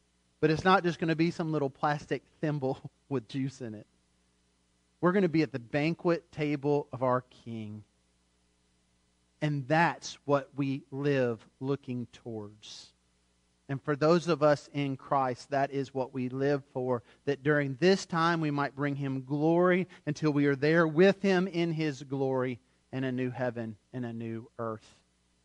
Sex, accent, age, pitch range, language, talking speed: male, American, 40-59, 115-170 Hz, English, 170 wpm